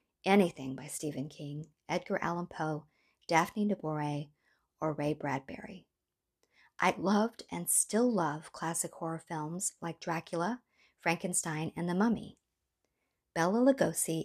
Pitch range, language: 155-205 Hz, English